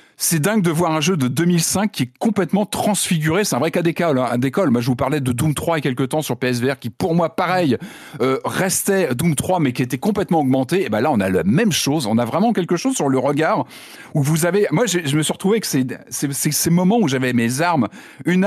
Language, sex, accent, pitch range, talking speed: French, male, French, 130-180 Hz, 265 wpm